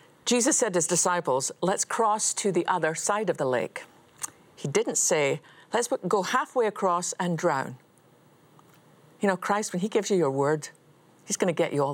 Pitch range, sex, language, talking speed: 165-205 Hz, female, English, 190 wpm